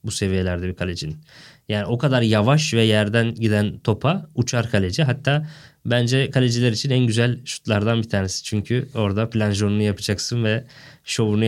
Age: 20-39